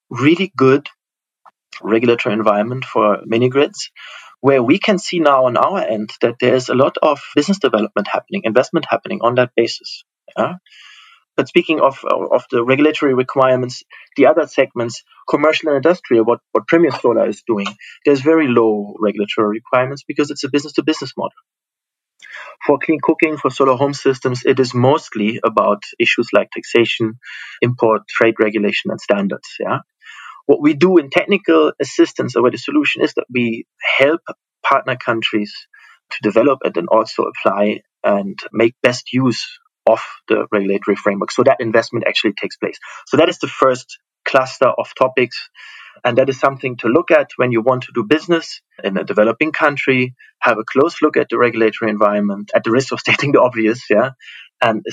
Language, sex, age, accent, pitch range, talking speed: English, male, 30-49, German, 115-145 Hz, 170 wpm